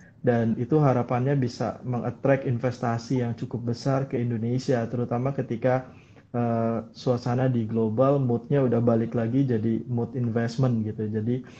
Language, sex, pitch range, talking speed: Indonesian, male, 120-145 Hz, 135 wpm